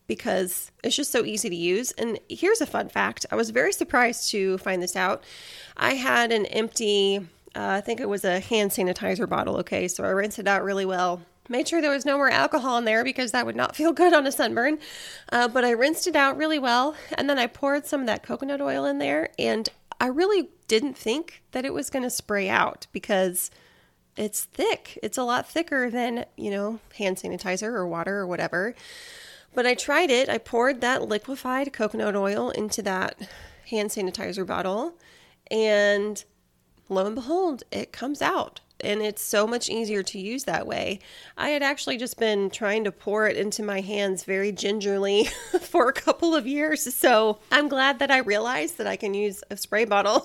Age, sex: 20-39, female